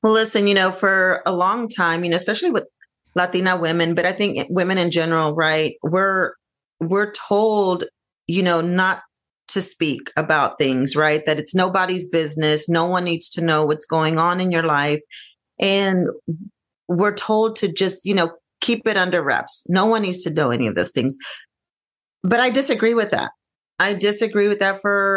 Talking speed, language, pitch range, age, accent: 185 wpm, English, 165-200 Hz, 40-59, American